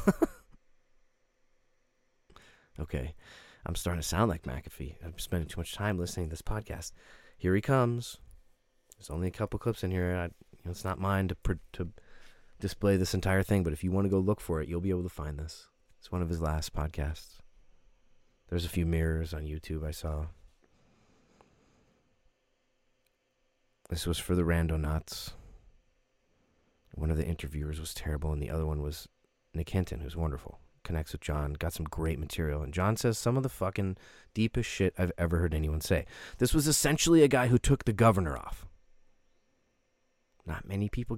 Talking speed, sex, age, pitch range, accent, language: 170 wpm, male, 30-49, 80-105 Hz, American, English